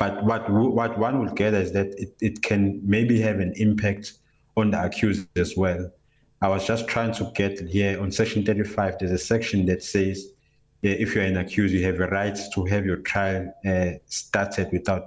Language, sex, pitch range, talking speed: English, male, 95-110 Hz, 205 wpm